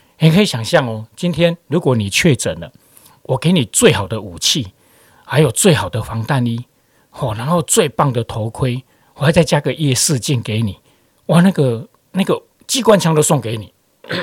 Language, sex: Chinese, male